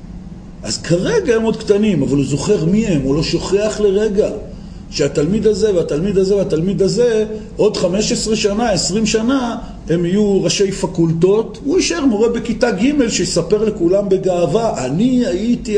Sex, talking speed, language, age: male, 150 wpm, Hebrew, 50-69